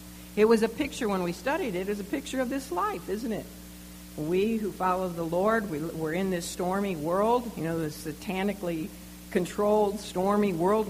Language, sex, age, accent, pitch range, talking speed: English, female, 60-79, American, 150-240 Hz, 180 wpm